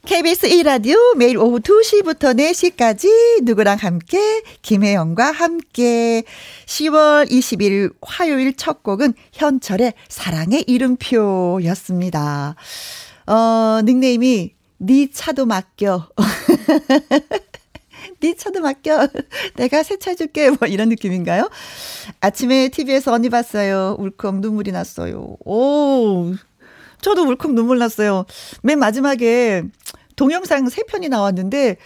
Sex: female